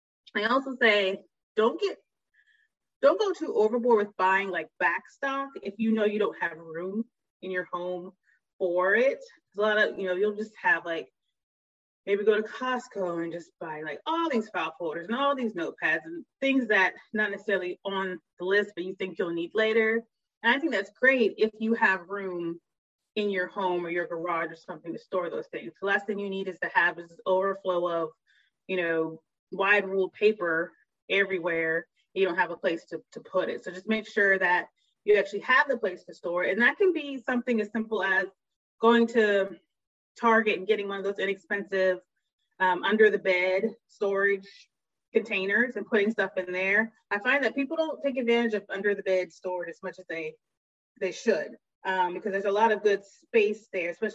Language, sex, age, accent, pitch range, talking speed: English, female, 30-49, American, 185-225 Hz, 205 wpm